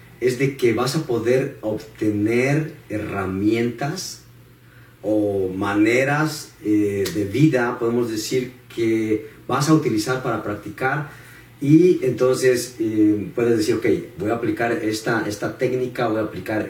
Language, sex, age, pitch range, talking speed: Spanish, male, 40-59, 105-130 Hz, 120 wpm